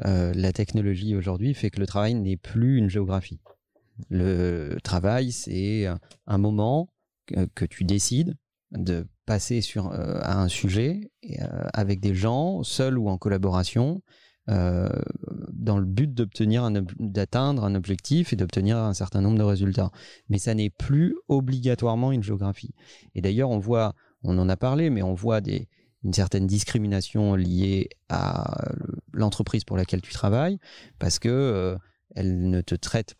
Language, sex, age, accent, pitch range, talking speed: French, male, 30-49, French, 95-130 Hz, 160 wpm